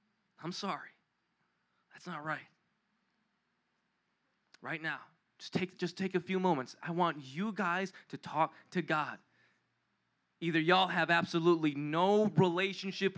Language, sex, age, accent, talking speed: English, male, 20-39, American, 125 wpm